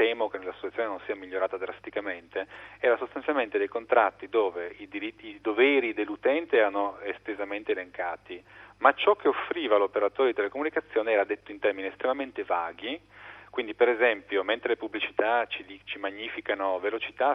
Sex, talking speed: male, 150 wpm